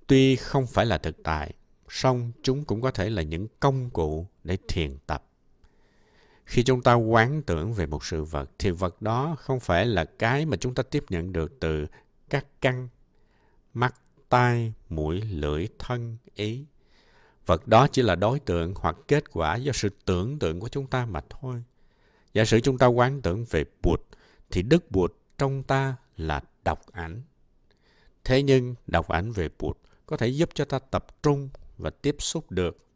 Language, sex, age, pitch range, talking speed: Vietnamese, male, 60-79, 85-130 Hz, 180 wpm